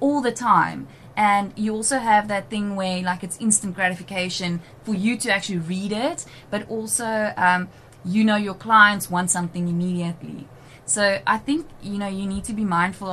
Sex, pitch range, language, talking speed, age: female, 175-210 Hz, English, 185 wpm, 20-39